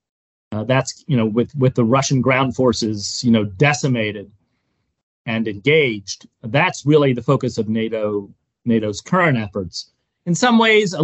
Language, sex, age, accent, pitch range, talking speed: English, male, 30-49, American, 115-150 Hz, 150 wpm